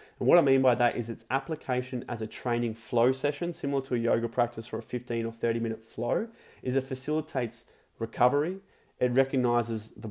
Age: 30-49